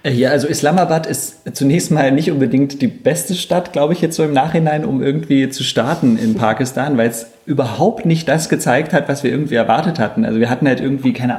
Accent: German